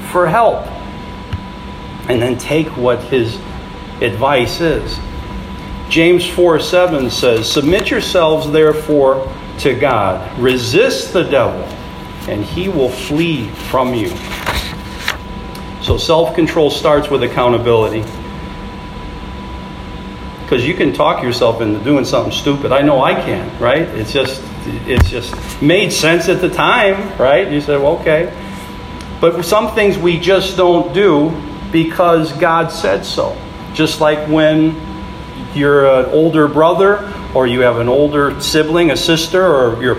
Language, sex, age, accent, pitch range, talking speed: English, male, 50-69, American, 135-170 Hz, 130 wpm